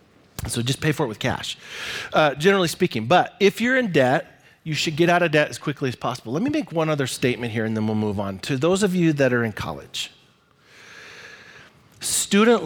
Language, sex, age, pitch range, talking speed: English, male, 40-59, 115-160 Hz, 220 wpm